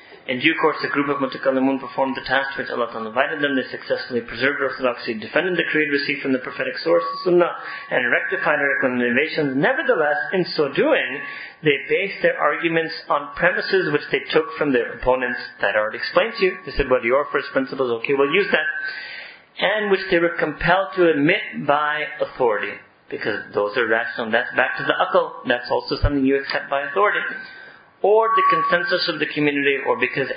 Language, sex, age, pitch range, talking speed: English, male, 40-59, 135-180 Hz, 195 wpm